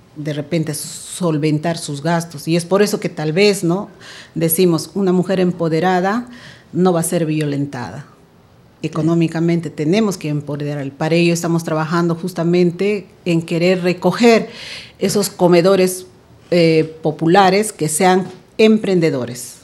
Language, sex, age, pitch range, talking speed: Spanish, female, 40-59, 160-195 Hz, 125 wpm